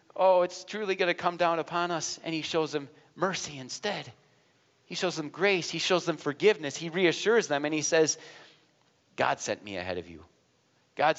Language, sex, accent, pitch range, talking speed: English, male, American, 145-180 Hz, 195 wpm